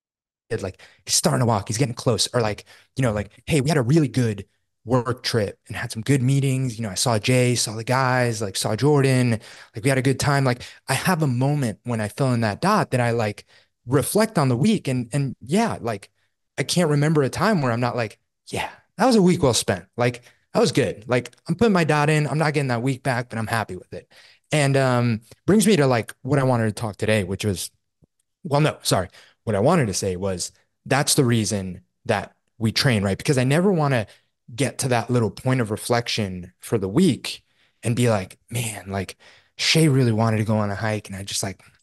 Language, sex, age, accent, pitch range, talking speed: English, male, 20-39, American, 110-140 Hz, 235 wpm